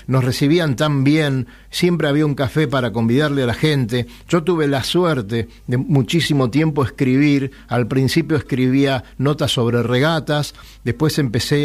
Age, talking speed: 50-69, 150 wpm